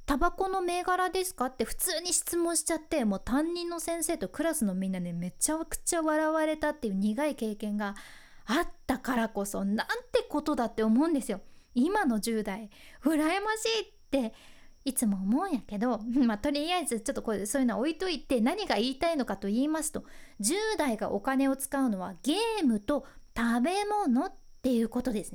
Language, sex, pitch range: Japanese, female, 245-345 Hz